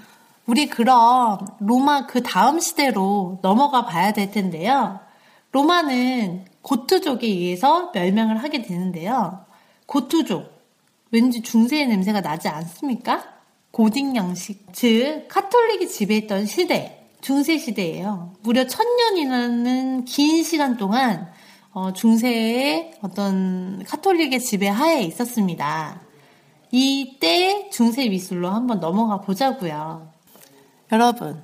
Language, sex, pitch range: Korean, female, 200-285 Hz